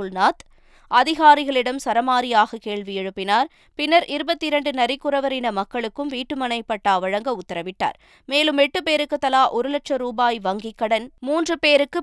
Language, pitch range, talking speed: Tamil, 220-280 Hz, 110 wpm